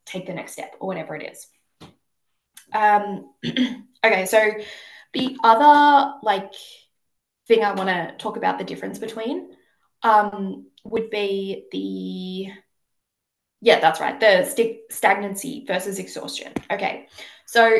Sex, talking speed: female, 125 wpm